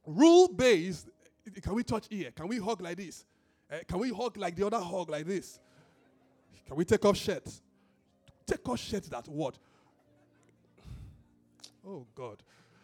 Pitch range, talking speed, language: 150-235 Hz, 155 wpm, English